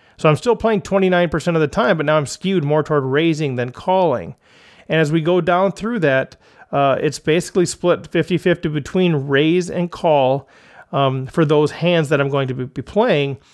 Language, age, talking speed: English, 40-59, 190 wpm